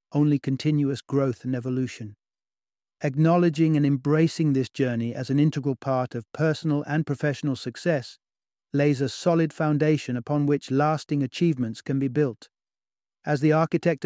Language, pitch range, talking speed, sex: English, 135-160 Hz, 140 wpm, male